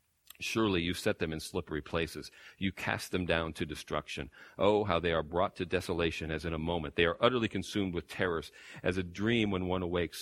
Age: 40-59